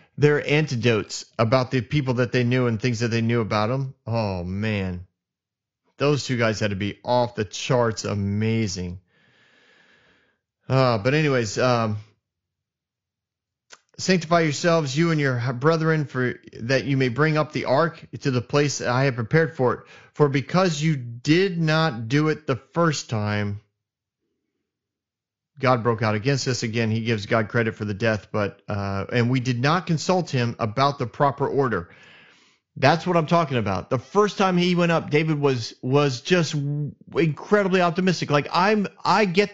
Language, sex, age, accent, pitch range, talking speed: English, male, 30-49, American, 120-170 Hz, 170 wpm